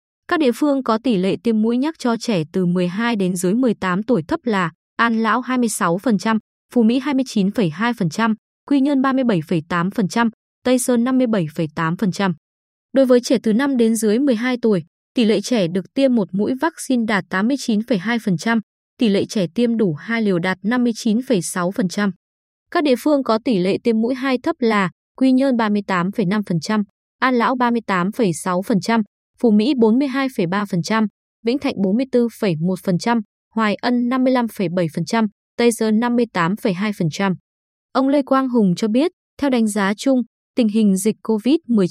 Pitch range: 195-250 Hz